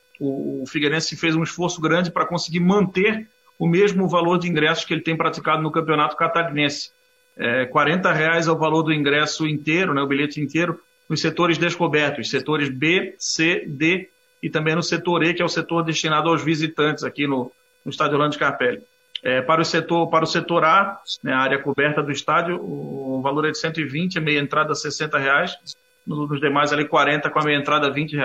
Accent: Brazilian